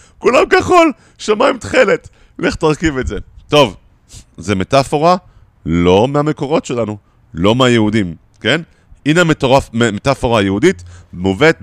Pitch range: 95-135 Hz